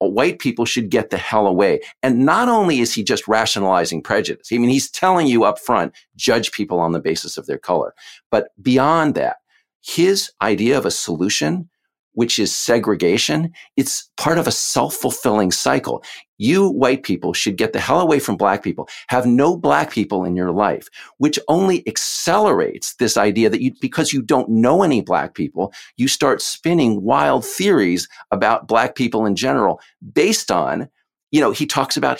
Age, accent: 50-69, American